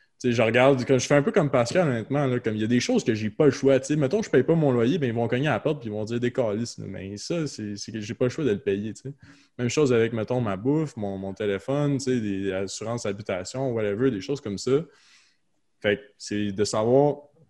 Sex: male